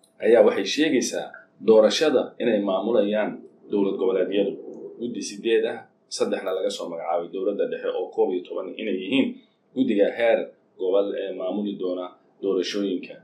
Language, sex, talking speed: English, male, 60 wpm